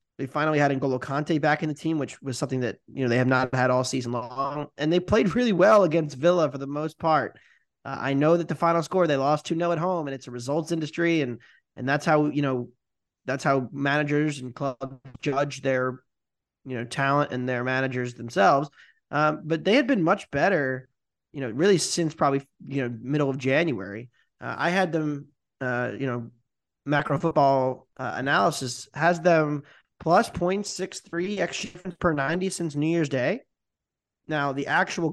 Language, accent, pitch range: English, American, 130-170 Hz